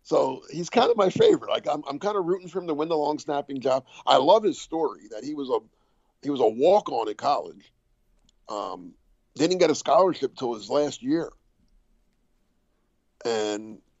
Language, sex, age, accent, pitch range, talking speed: English, male, 50-69, American, 120-180 Hz, 190 wpm